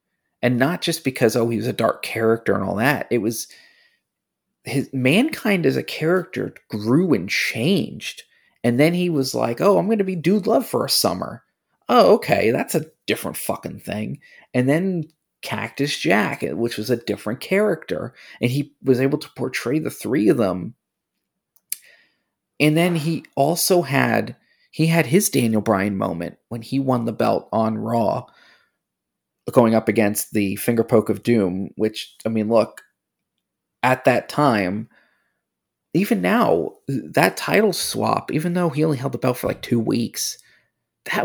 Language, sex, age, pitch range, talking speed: English, male, 30-49, 115-165 Hz, 165 wpm